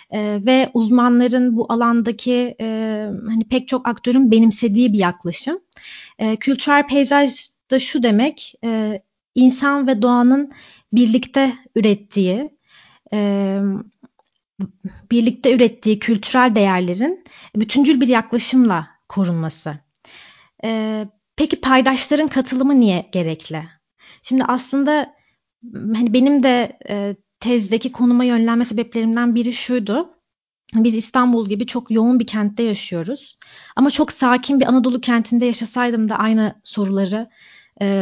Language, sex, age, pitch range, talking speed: Turkish, female, 30-49, 210-255 Hz, 110 wpm